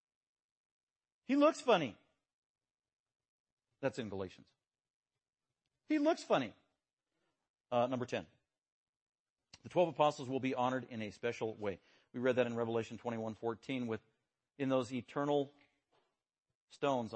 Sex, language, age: male, English, 50-69